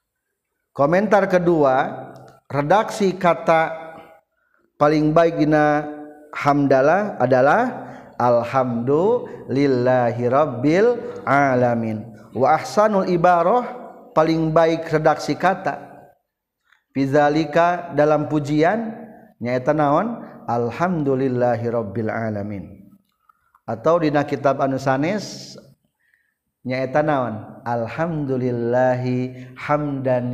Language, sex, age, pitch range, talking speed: Indonesian, male, 50-69, 120-155 Hz, 65 wpm